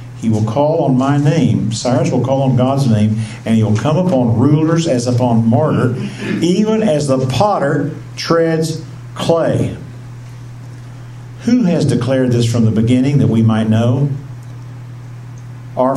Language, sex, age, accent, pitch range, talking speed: English, male, 50-69, American, 120-135 Hz, 145 wpm